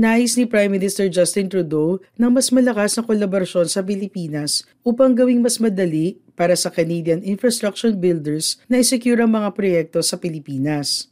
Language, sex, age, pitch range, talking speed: Filipino, female, 40-59, 165-225 Hz, 150 wpm